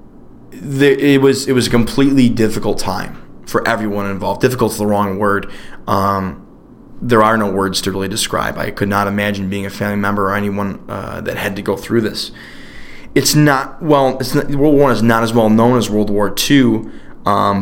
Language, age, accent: English, 20-39, American